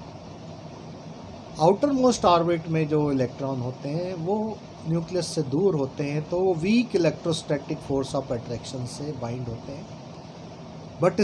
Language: Hindi